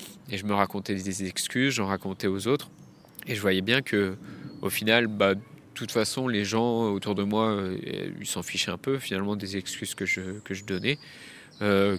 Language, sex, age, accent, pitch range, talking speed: French, male, 20-39, French, 100-120 Hz, 205 wpm